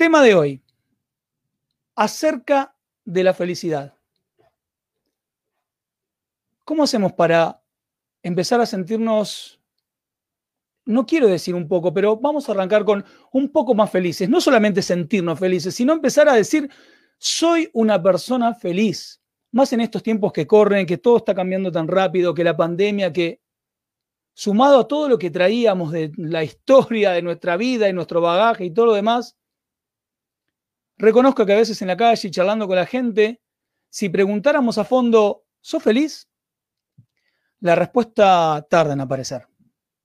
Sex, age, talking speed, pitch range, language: male, 40-59, 145 wpm, 180-245 Hz, Spanish